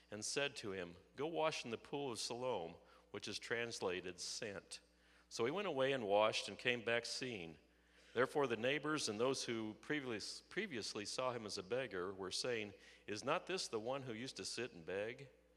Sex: male